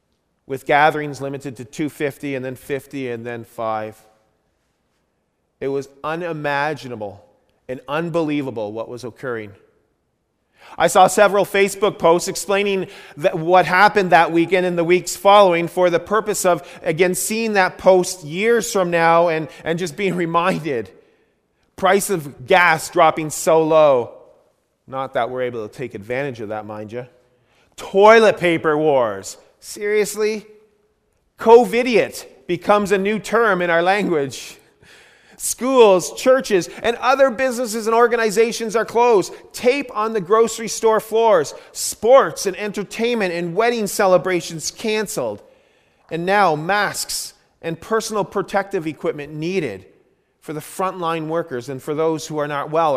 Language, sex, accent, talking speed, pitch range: English, male, American, 135 wpm, 150-210 Hz